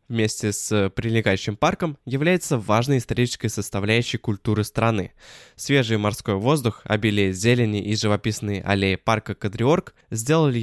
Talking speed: 120 wpm